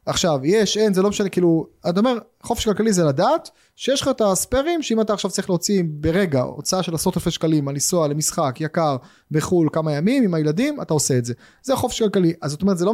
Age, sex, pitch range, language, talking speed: 30-49, male, 140-180 Hz, Hebrew, 225 wpm